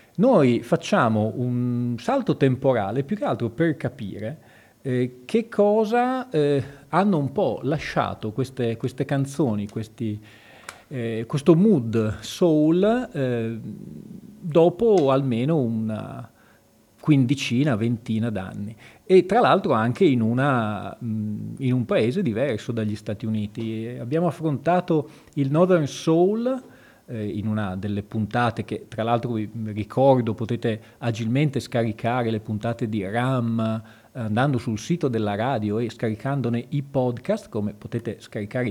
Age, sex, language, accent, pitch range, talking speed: 40-59, male, Italian, native, 115-150 Hz, 120 wpm